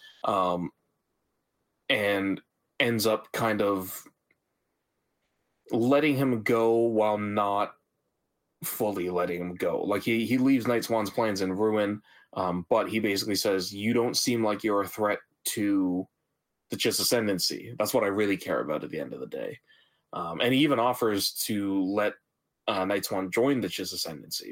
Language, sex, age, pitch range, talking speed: English, male, 20-39, 95-120 Hz, 160 wpm